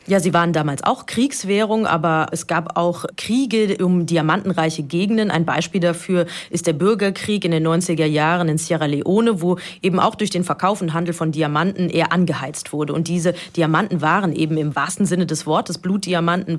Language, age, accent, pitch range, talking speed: German, 30-49, German, 160-190 Hz, 185 wpm